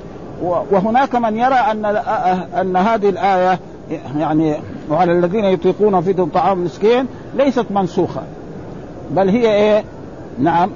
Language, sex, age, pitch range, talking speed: Arabic, male, 50-69, 180-225 Hz, 105 wpm